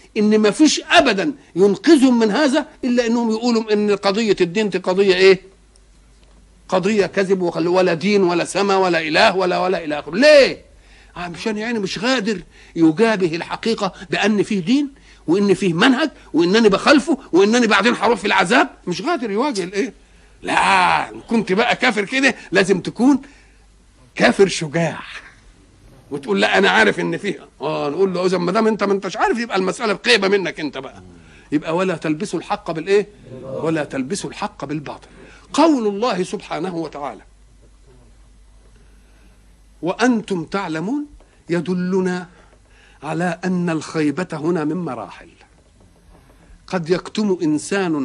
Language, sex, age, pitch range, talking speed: Arabic, male, 50-69, 170-225 Hz, 135 wpm